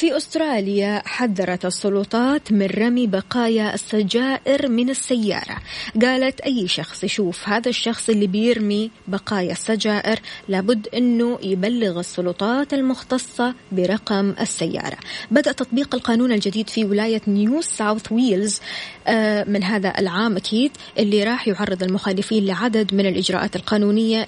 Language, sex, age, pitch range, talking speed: Arabic, female, 20-39, 200-240 Hz, 120 wpm